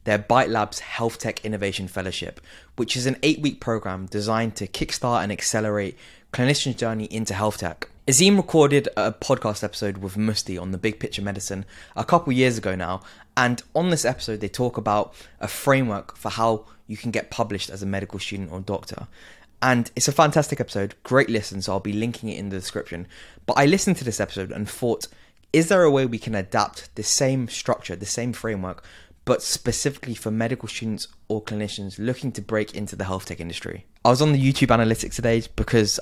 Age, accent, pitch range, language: 20-39, British, 95-120 Hz, English